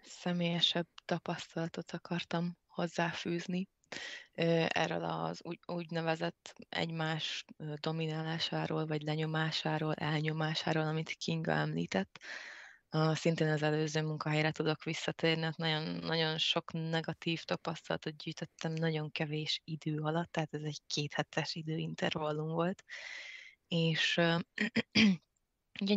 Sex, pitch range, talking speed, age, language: female, 155-170 Hz, 95 wpm, 20-39, Hungarian